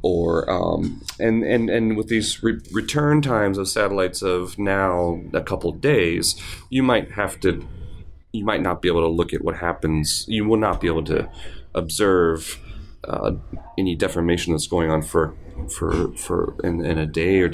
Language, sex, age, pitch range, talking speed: English, male, 30-49, 80-100 Hz, 180 wpm